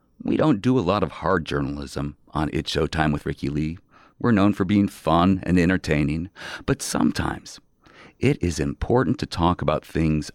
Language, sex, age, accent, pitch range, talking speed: English, male, 40-59, American, 85-125 Hz, 175 wpm